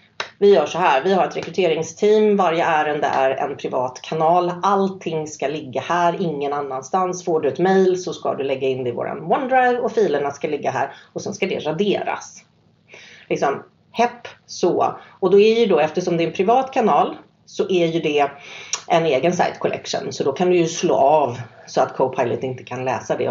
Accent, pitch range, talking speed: native, 150-190 Hz, 205 wpm